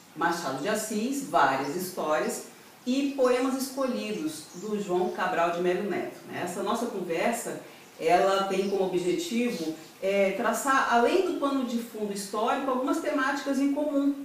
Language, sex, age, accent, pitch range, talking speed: Portuguese, female, 40-59, Brazilian, 175-240 Hz, 140 wpm